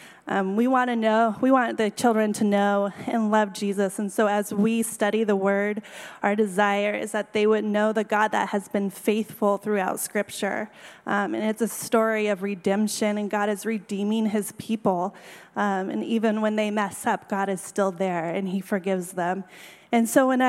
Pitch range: 200-235 Hz